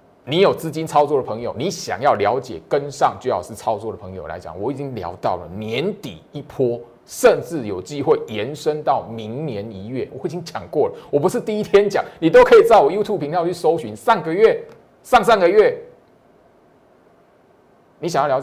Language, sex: Chinese, male